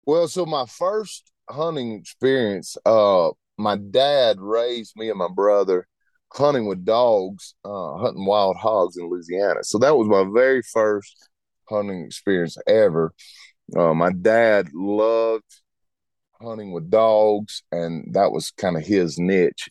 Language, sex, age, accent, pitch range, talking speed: English, male, 30-49, American, 95-115 Hz, 140 wpm